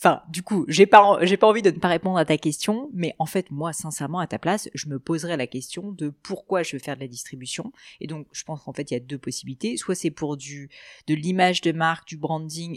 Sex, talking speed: female, 270 wpm